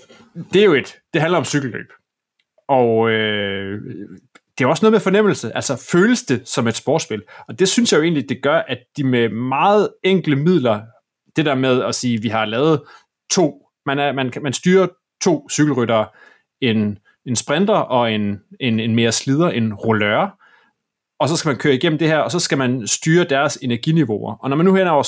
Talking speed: 195 wpm